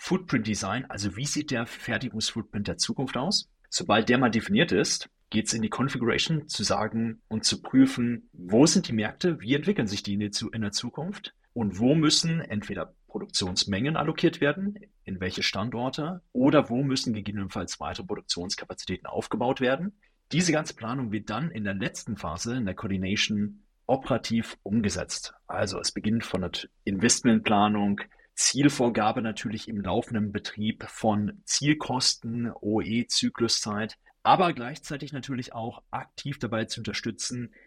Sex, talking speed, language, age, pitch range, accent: male, 145 wpm, German, 40-59, 105-145 Hz, German